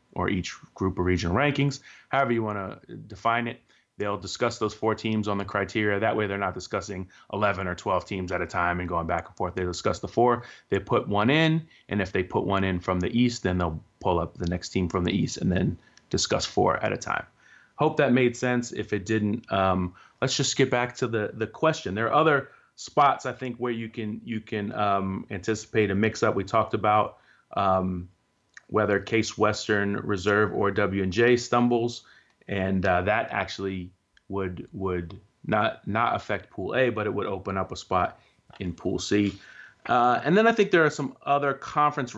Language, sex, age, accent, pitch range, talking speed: English, male, 30-49, American, 100-120 Hz, 205 wpm